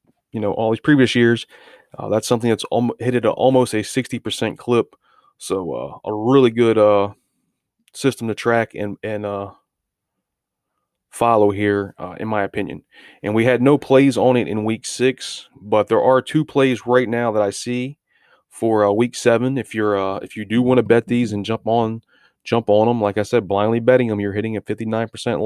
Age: 30-49